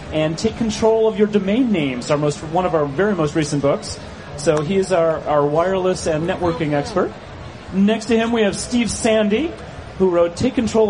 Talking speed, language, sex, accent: 195 wpm, English, male, American